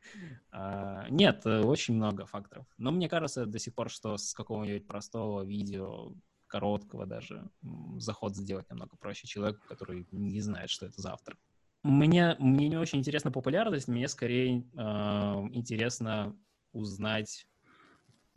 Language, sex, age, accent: Russian, male, 20-39, native